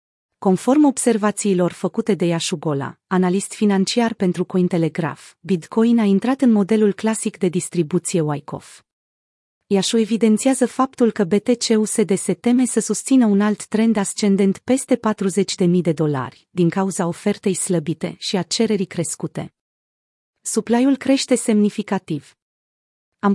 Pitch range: 175-220 Hz